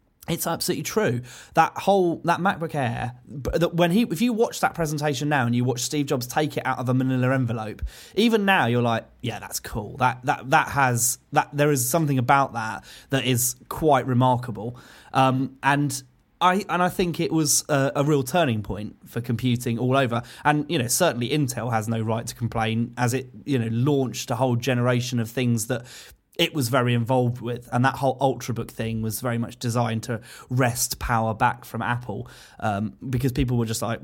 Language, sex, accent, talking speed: English, male, British, 200 wpm